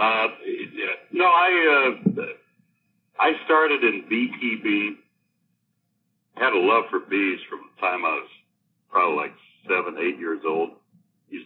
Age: 60-79